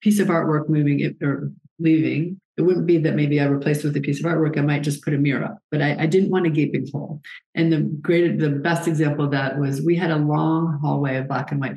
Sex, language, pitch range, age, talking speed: female, English, 140-165 Hz, 40-59, 260 wpm